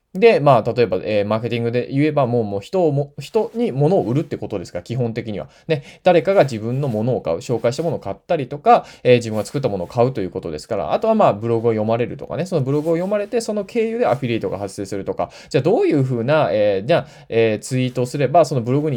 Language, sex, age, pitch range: Japanese, male, 20-39, 115-175 Hz